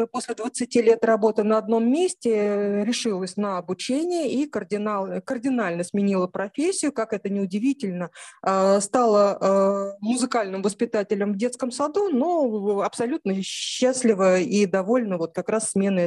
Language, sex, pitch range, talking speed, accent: Russian, female, 195-260 Hz, 125 wpm, native